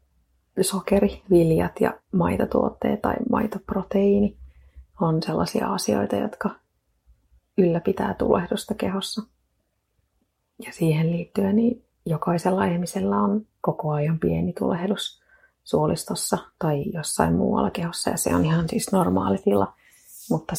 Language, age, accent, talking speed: Finnish, 30-49, native, 100 wpm